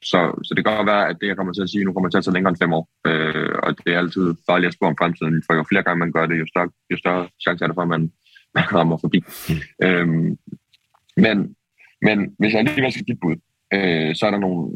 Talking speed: 280 wpm